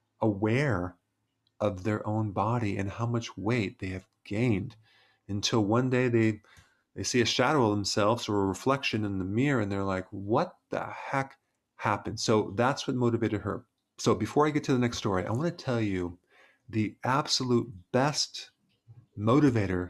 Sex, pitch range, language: male, 100-130 Hz, English